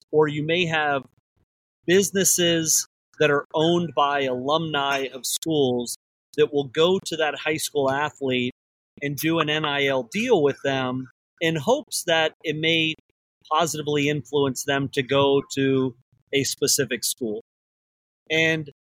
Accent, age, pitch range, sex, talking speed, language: American, 30-49, 130-160 Hz, male, 135 wpm, English